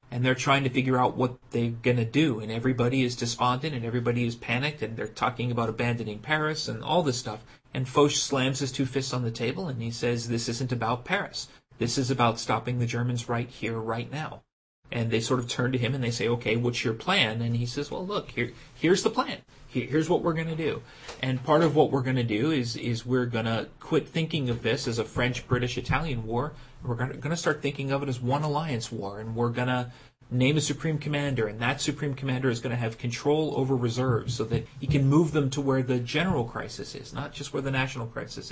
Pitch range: 120-140 Hz